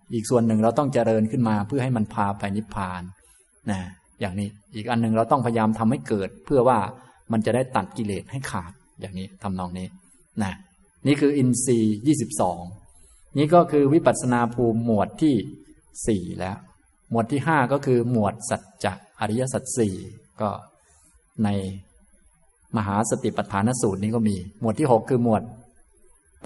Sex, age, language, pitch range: male, 20-39, Thai, 100-125 Hz